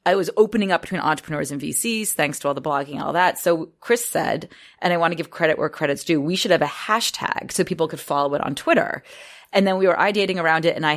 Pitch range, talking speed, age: 145-195 Hz, 270 wpm, 30-49